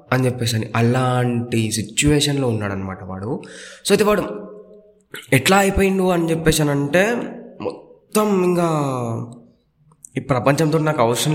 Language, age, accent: Telugu, 20-39, native